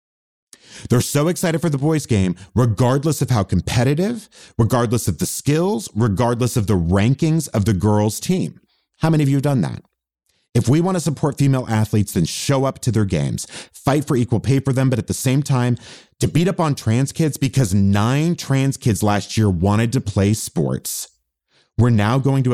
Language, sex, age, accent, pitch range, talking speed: English, male, 30-49, American, 115-160 Hz, 195 wpm